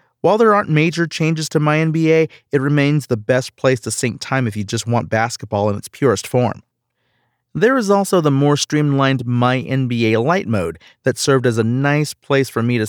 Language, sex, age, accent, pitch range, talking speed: English, male, 40-59, American, 120-150 Hz, 195 wpm